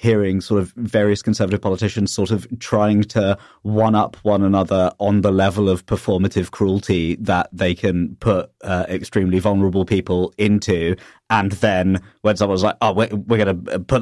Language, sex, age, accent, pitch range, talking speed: English, male, 30-49, British, 95-115 Hz, 165 wpm